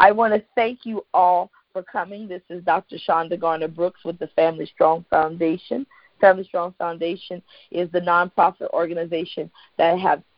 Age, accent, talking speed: 40-59, American, 155 wpm